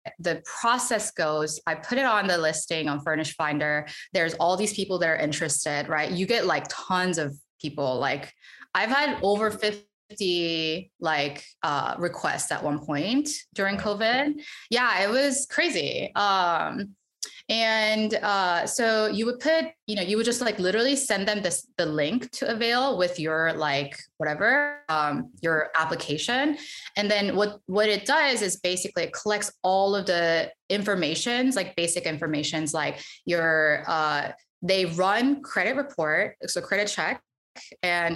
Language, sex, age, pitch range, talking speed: English, female, 20-39, 160-225 Hz, 155 wpm